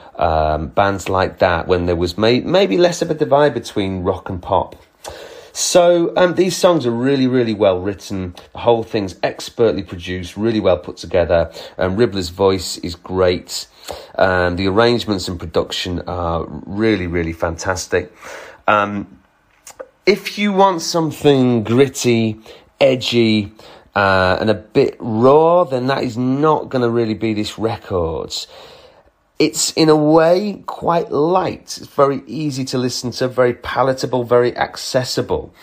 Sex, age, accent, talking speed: male, 30-49, British, 145 wpm